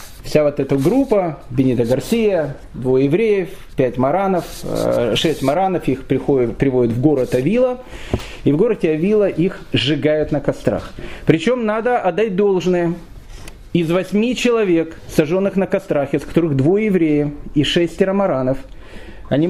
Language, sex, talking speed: Russian, male, 130 wpm